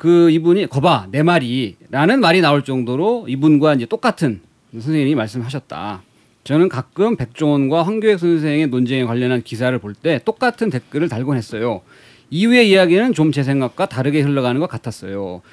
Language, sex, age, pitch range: Korean, male, 40-59, 130-200 Hz